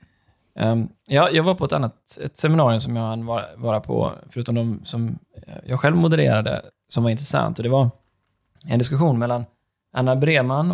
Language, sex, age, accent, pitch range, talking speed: Swedish, male, 20-39, native, 110-140 Hz, 170 wpm